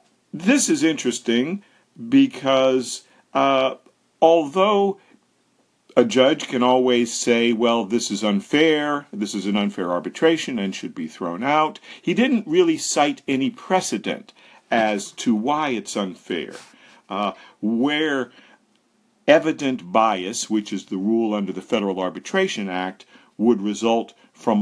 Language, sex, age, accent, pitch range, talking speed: English, male, 50-69, American, 100-160 Hz, 125 wpm